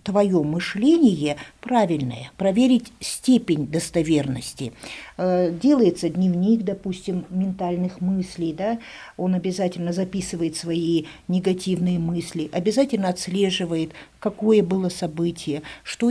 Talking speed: 85 wpm